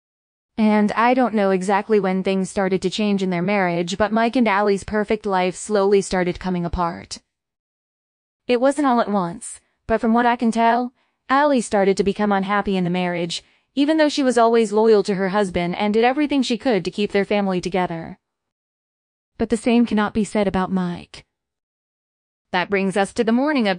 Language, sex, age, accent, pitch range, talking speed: English, female, 20-39, American, 185-230 Hz, 190 wpm